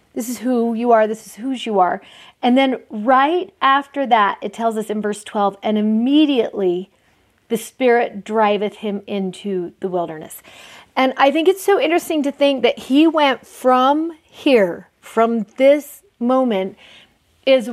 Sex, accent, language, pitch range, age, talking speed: female, American, English, 215-270 Hz, 40-59, 160 wpm